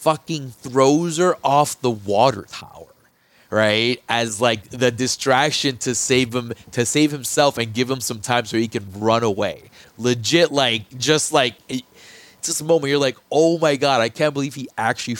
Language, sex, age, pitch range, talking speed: English, male, 30-49, 110-140 Hz, 180 wpm